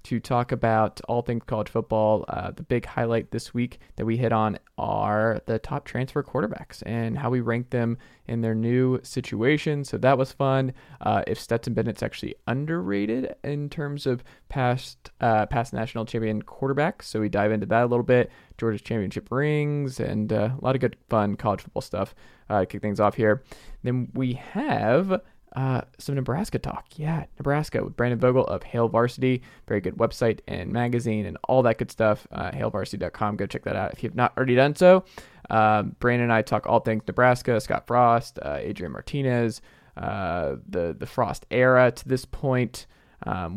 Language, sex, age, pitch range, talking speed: English, male, 20-39, 110-130 Hz, 185 wpm